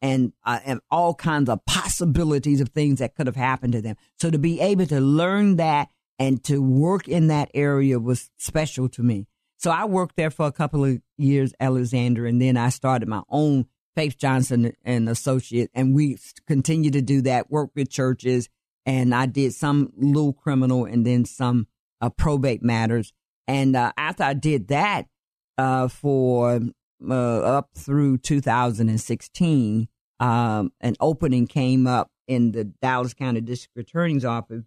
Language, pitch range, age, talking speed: English, 120-140 Hz, 50-69, 170 wpm